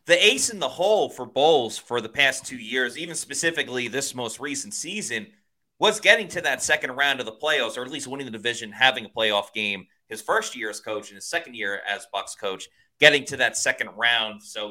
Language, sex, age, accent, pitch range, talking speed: English, male, 30-49, American, 110-160 Hz, 225 wpm